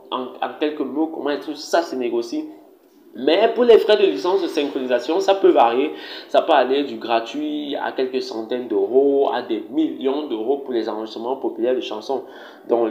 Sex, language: male, French